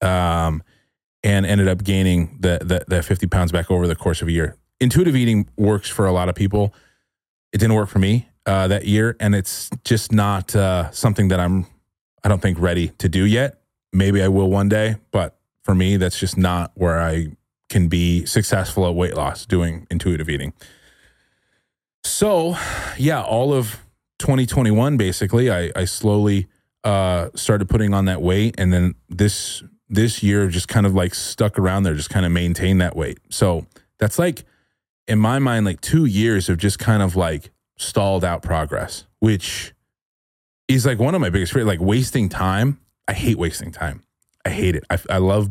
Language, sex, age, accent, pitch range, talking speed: English, male, 30-49, American, 90-110 Hz, 190 wpm